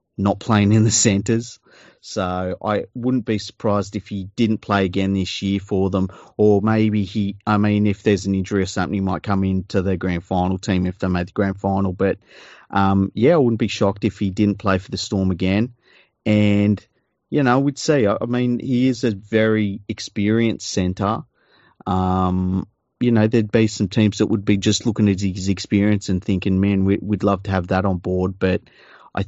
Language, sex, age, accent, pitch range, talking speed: English, male, 30-49, Australian, 95-110 Hz, 205 wpm